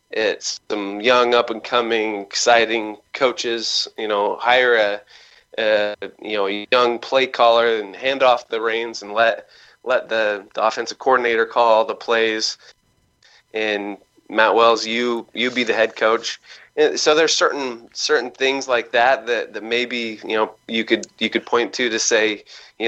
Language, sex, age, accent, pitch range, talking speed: English, male, 20-39, American, 110-135 Hz, 170 wpm